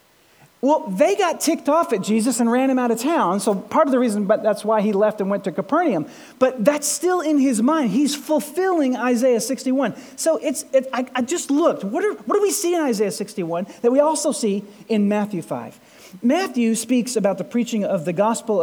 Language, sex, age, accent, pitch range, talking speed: English, male, 40-59, American, 215-280 Hz, 220 wpm